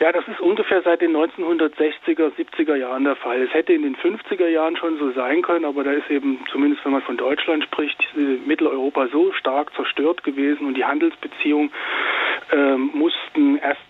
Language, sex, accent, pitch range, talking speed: German, male, German, 140-170 Hz, 180 wpm